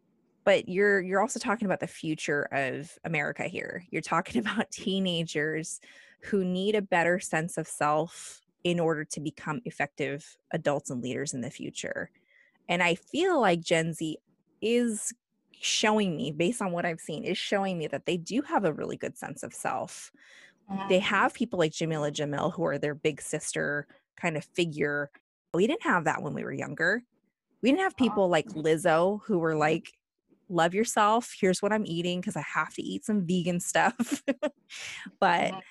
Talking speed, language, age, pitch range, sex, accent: 180 wpm, English, 20-39, 160-210 Hz, female, American